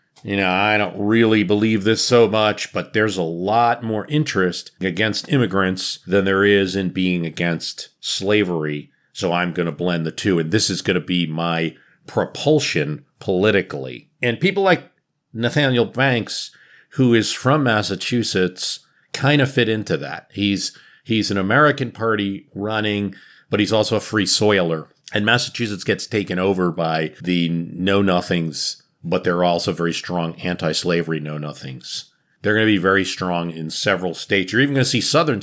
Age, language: 40-59, English